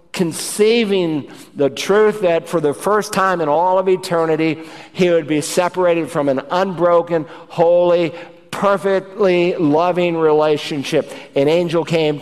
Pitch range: 165-195 Hz